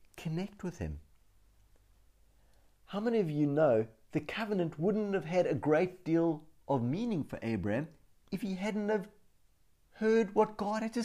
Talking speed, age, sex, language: 155 wpm, 50-69, male, English